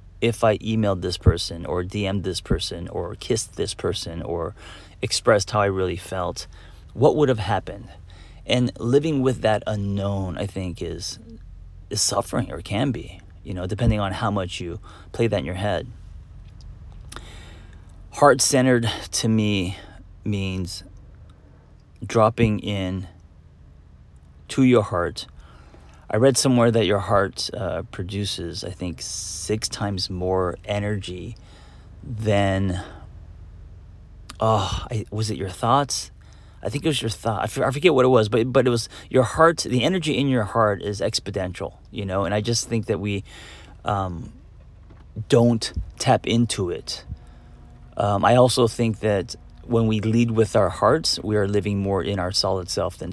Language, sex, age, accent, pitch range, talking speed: English, male, 30-49, American, 90-110 Hz, 155 wpm